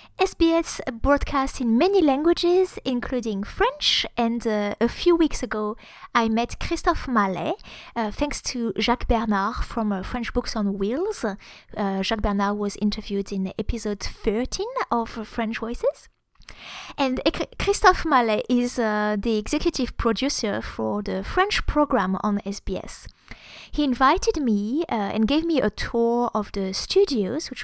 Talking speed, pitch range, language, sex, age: 145 wpm, 215-295 Hz, English, female, 20-39